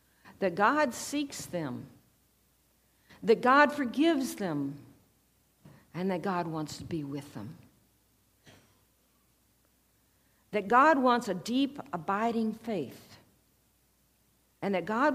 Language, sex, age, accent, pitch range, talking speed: English, female, 60-79, American, 170-250 Hz, 105 wpm